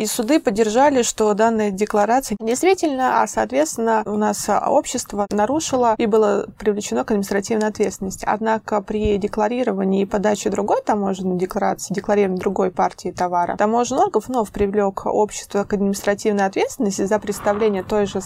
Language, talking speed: Russian, 140 wpm